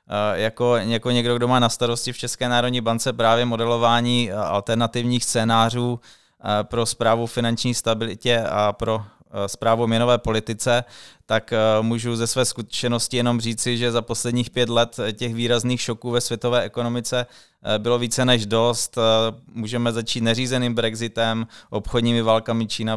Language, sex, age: Czech, male, 20-39